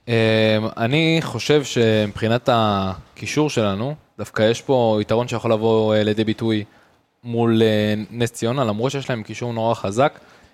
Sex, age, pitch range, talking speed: male, 20-39, 115-145 Hz, 125 wpm